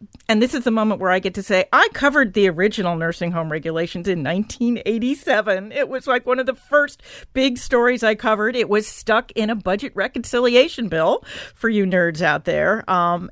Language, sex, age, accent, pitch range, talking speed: English, female, 50-69, American, 185-230 Hz, 200 wpm